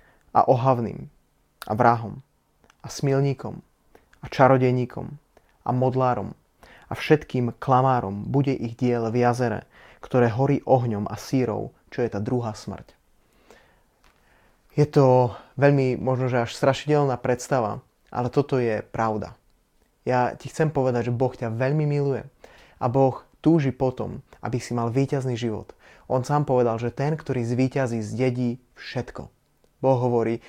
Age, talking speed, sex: 30-49, 135 wpm, male